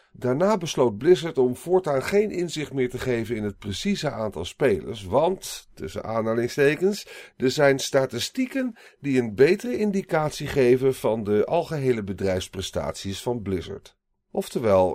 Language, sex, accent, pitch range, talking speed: Dutch, male, Dutch, 100-155 Hz, 135 wpm